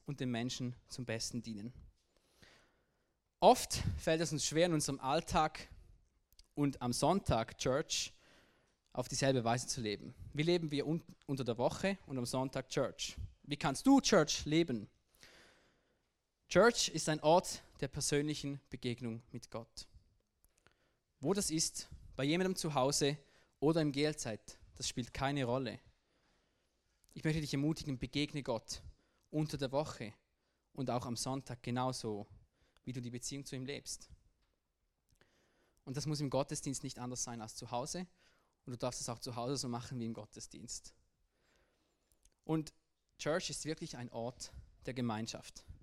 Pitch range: 115-145 Hz